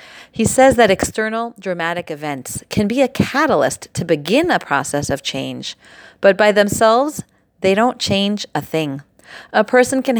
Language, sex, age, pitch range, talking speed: English, female, 30-49, 165-225 Hz, 160 wpm